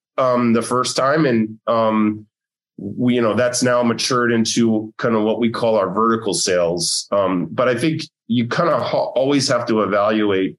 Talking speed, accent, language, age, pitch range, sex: 180 wpm, American, English, 30-49, 105-125 Hz, male